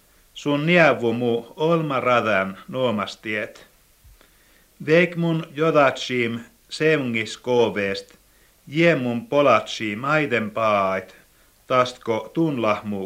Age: 60-79